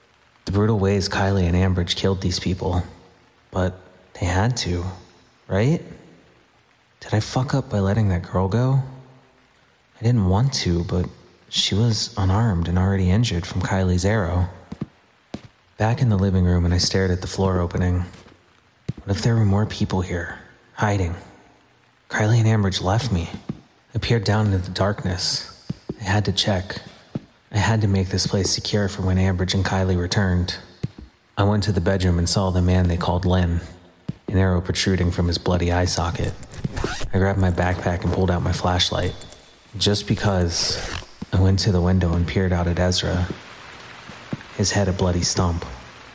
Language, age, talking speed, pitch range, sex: English, 30-49, 170 wpm, 90-105 Hz, male